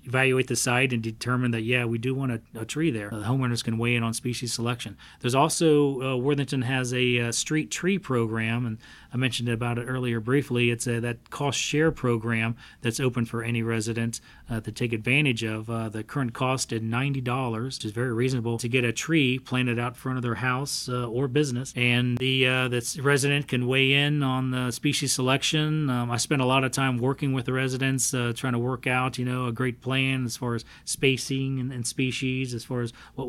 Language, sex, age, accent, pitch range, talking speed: English, male, 40-59, American, 120-130 Hz, 220 wpm